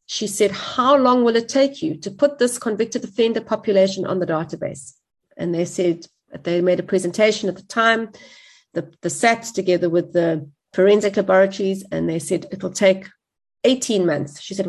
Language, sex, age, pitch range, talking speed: English, female, 40-59, 185-245 Hz, 180 wpm